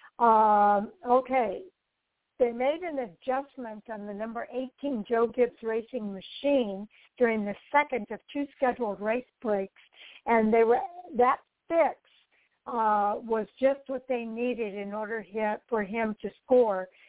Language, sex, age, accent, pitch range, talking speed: English, female, 60-79, American, 215-250 Hz, 135 wpm